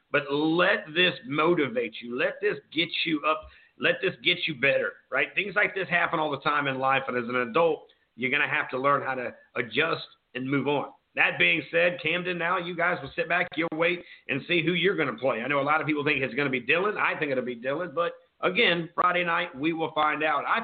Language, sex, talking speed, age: English, male, 250 wpm, 50-69